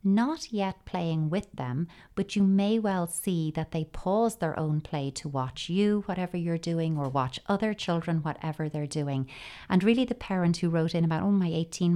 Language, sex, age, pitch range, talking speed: English, female, 30-49, 145-185 Hz, 200 wpm